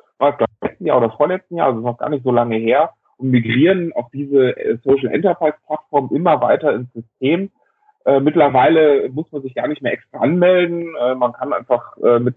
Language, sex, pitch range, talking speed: German, male, 120-150 Hz, 195 wpm